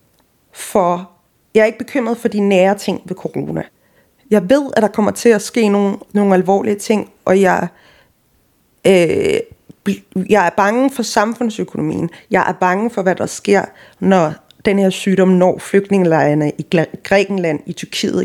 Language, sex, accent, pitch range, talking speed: Danish, female, native, 165-200 Hz, 160 wpm